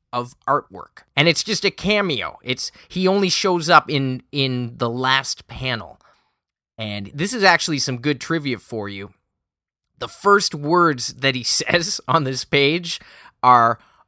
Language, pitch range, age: English, 125-190 Hz, 20-39